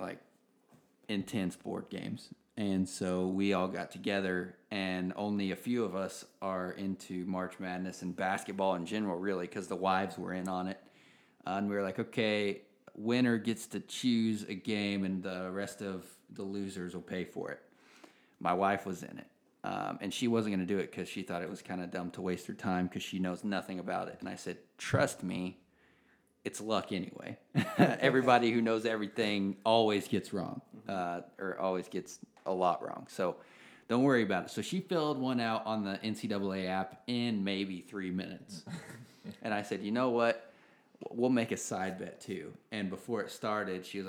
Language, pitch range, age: English, 90-105 Hz, 30-49